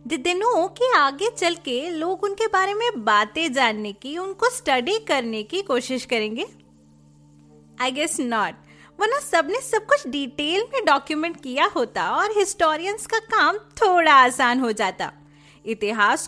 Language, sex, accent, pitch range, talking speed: Hindi, female, native, 230-370 Hz, 145 wpm